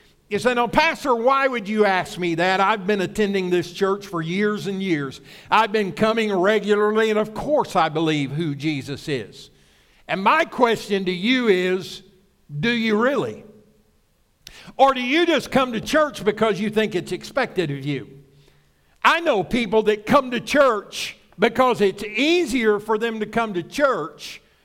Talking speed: 170 wpm